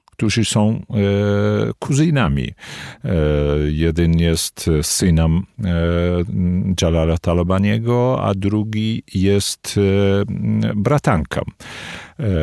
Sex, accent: male, native